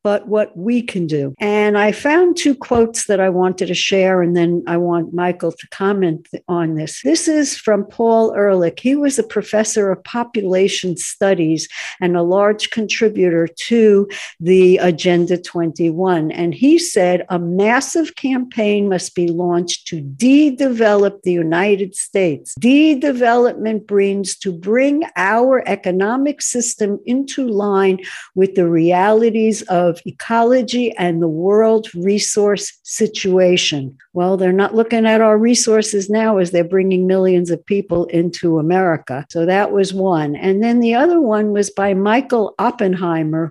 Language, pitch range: English, 180-225 Hz